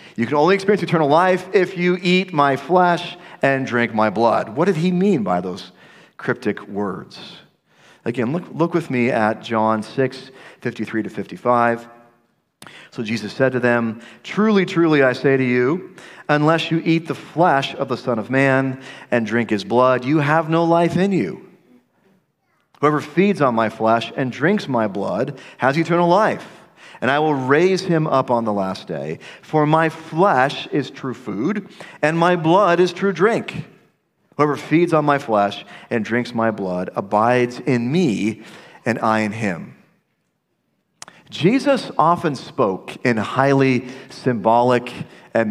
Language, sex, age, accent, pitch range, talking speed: English, male, 40-59, American, 115-165 Hz, 160 wpm